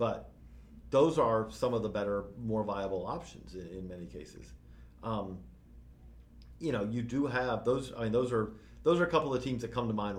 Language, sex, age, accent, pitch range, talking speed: English, male, 40-59, American, 90-120 Hz, 205 wpm